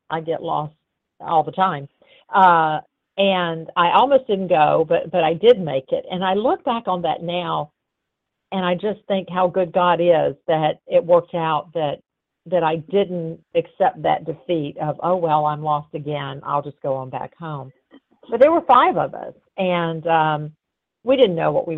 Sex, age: female, 50-69